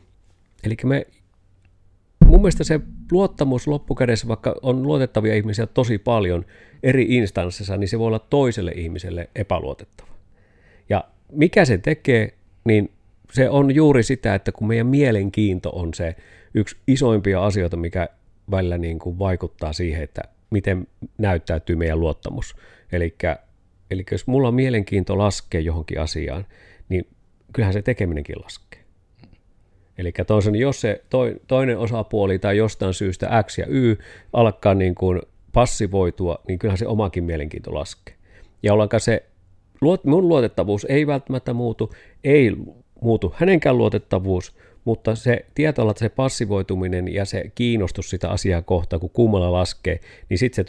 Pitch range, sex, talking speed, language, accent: 90-115 Hz, male, 140 wpm, Finnish, native